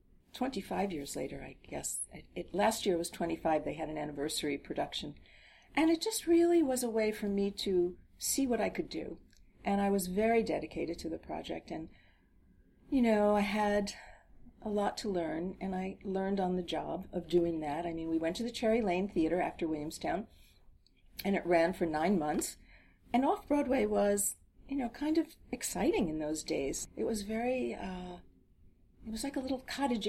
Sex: female